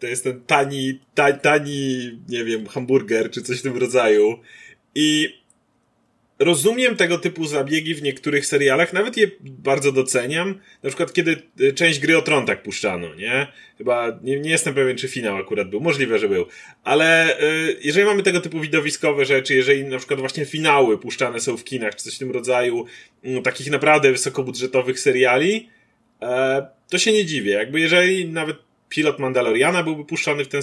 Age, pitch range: 30-49, 135-175 Hz